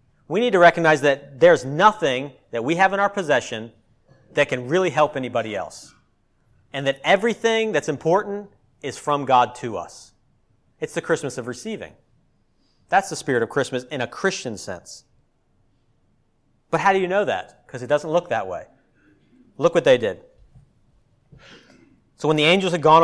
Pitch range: 125-180 Hz